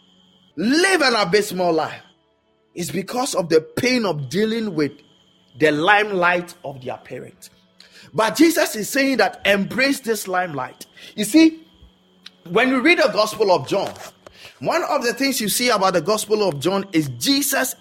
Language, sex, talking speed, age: English, male, 160 wpm, 30-49